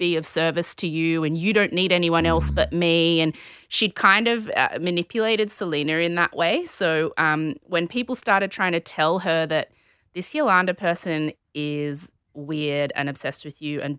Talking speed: 185 wpm